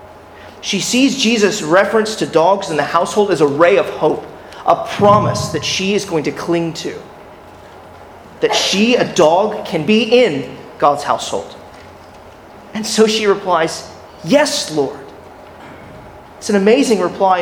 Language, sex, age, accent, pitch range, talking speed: English, male, 30-49, American, 155-215 Hz, 145 wpm